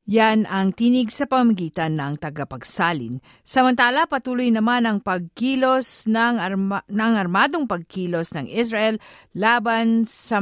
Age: 50-69